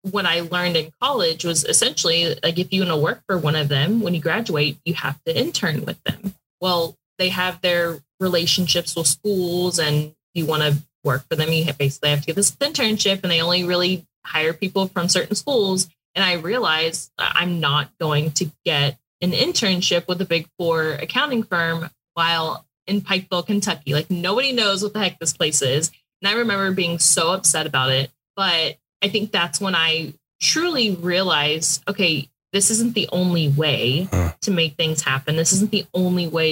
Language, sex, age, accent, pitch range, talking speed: English, female, 20-39, American, 155-195 Hz, 190 wpm